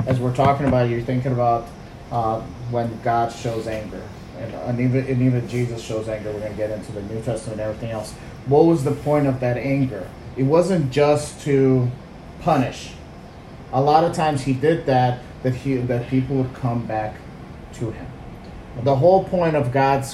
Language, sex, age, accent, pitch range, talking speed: English, male, 30-49, American, 125-155 Hz, 190 wpm